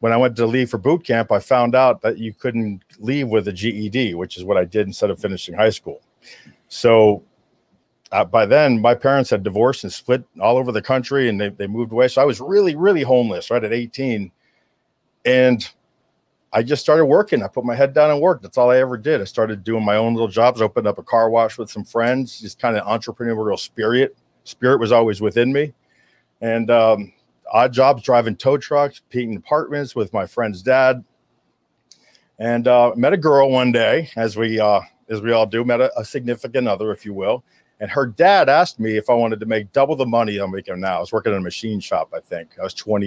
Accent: American